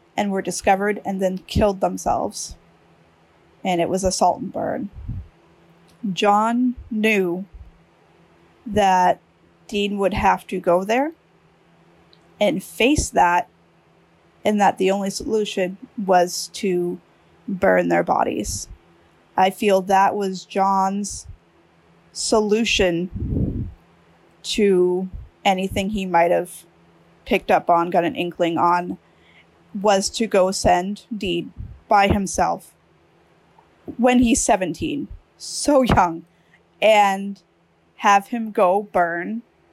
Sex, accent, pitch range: female, American, 170-205 Hz